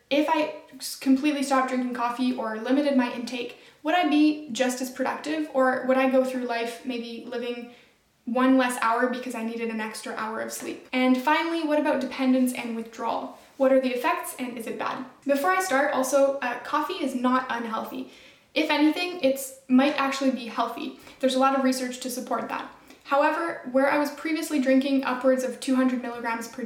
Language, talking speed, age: English, 190 wpm, 10-29